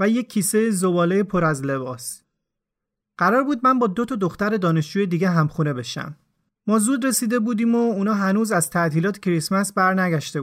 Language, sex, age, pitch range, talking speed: Persian, male, 30-49, 175-225 Hz, 165 wpm